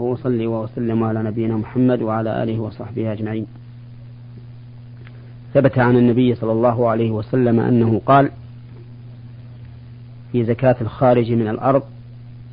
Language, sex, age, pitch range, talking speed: Arabic, male, 40-59, 120-125 Hz, 115 wpm